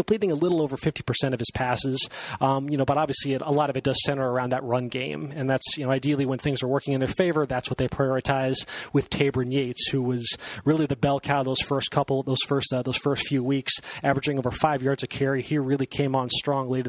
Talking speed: 255 wpm